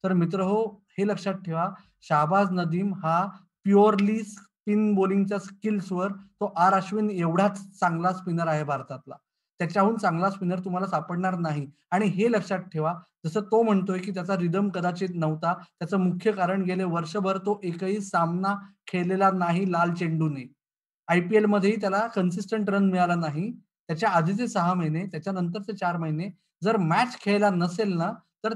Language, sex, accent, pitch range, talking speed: Marathi, male, native, 175-210 Hz, 155 wpm